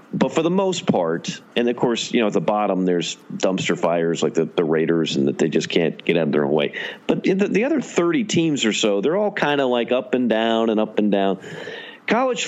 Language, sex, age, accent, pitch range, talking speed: English, male, 40-59, American, 100-135 Hz, 255 wpm